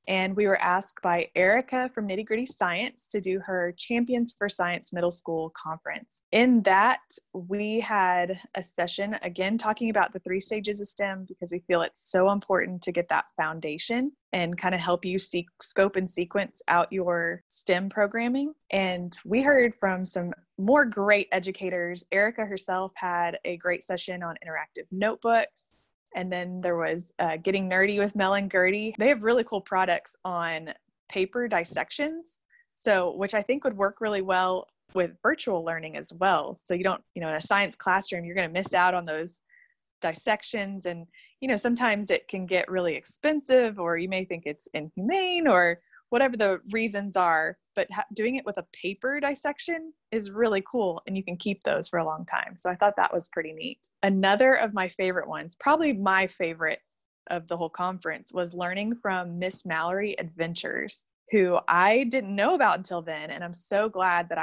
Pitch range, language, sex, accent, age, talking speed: 175-215 Hz, English, female, American, 20-39, 185 wpm